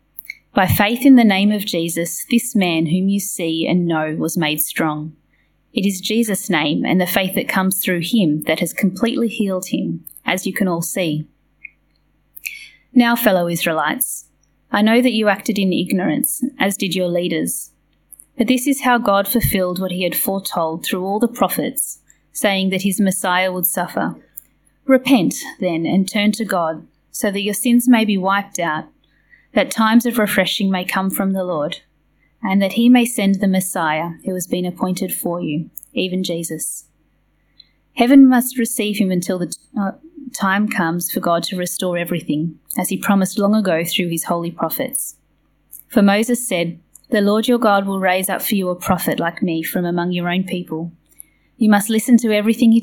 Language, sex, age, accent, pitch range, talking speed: English, female, 20-39, Australian, 175-220 Hz, 180 wpm